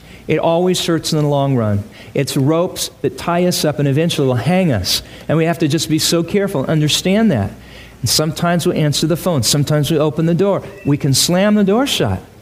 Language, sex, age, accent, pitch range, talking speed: English, male, 40-59, American, 120-175 Hz, 220 wpm